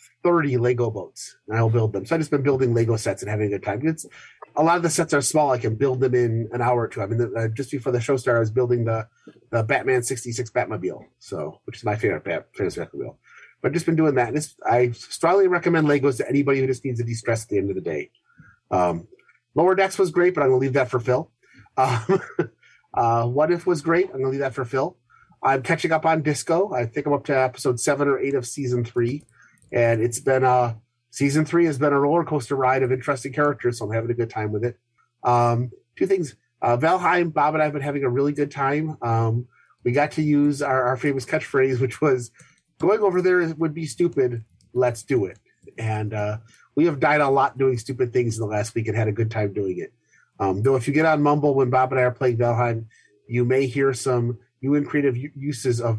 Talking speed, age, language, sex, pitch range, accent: 245 wpm, 30-49, English, male, 120-145 Hz, American